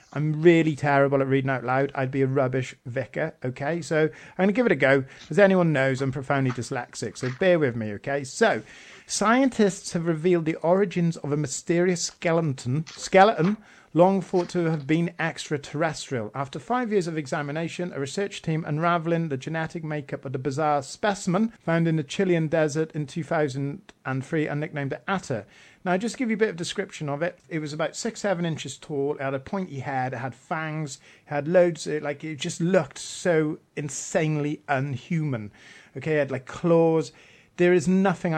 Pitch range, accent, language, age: 135-175 Hz, British, English, 40-59